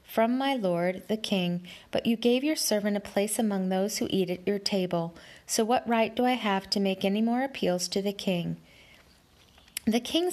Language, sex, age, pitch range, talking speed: English, female, 40-59, 185-240 Hz, 205 wpm